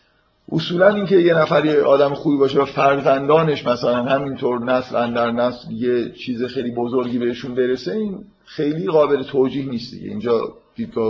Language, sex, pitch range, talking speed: Persian, male, 120-150 Hz, 155 wpm